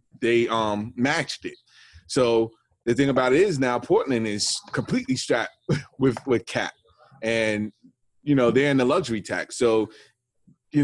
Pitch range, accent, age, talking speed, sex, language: 115-140 Hz, American, 20-39, 155 wpm, male, English